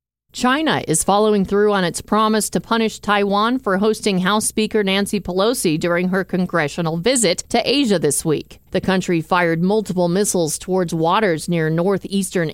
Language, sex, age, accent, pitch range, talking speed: English, female, 40-59, American, 175-220 Hz, 160 wpm